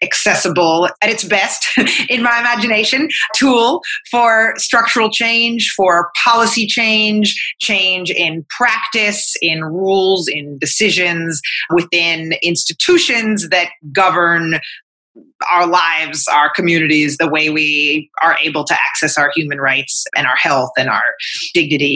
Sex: female